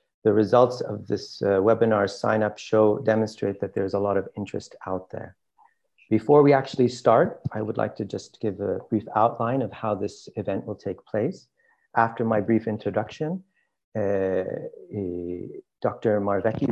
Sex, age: male, 40-59